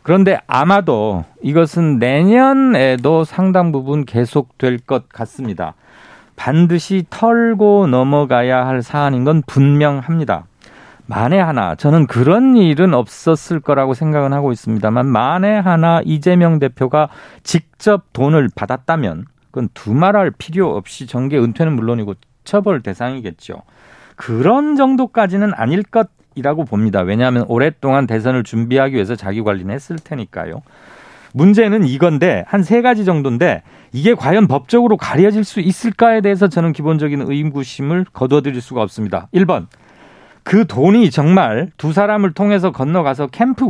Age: 40-59